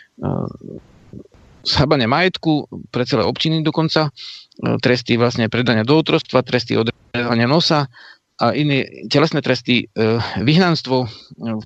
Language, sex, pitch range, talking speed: Slovak, male, 115-135 Hz, 100 wpm